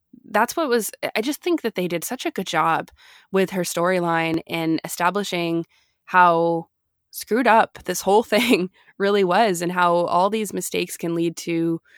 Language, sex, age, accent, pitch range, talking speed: English, female, 20-39, American, 170-210 Hz, 170 wpm